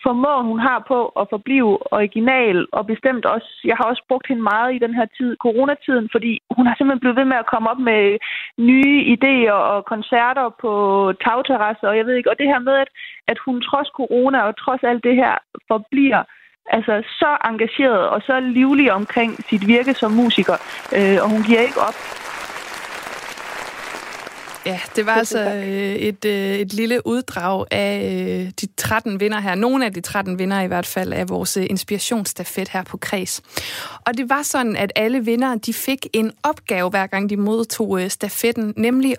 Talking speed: 180 wpm